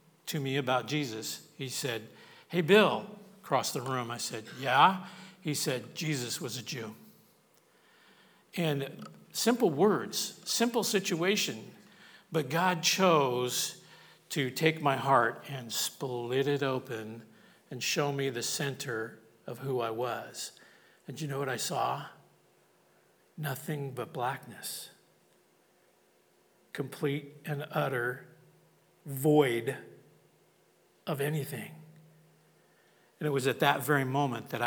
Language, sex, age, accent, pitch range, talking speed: English, male, 50-69, American, 130-160 Hz, 115 wpm